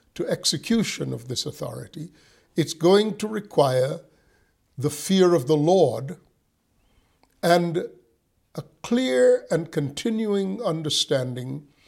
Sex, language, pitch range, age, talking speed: male, English, 140-180 Hz, 50-69, 100 wpm